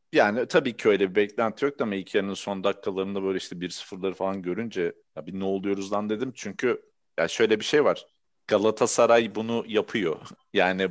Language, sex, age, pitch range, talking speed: Turkish, male, 40-59, 95-120 Hz, 170 wpm